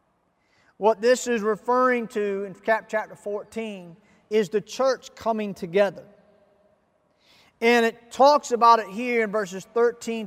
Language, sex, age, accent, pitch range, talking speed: English, male, 40-59, American, 190-250 Hz, 130 wpm